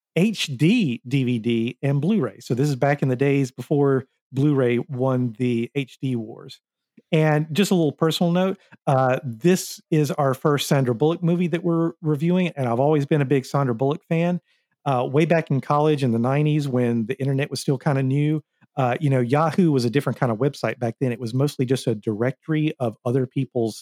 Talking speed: 200 wpm